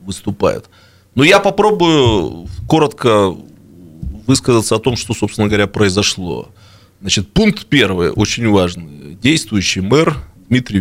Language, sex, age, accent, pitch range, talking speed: Russian, male, 30-49, native, 95-125 Hz, 110 wpm